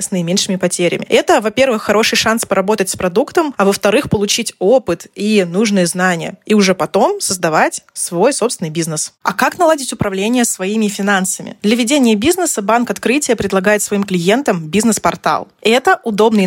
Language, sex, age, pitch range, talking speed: Russian, female, 20-39, 190-230 Hz, 150 wpm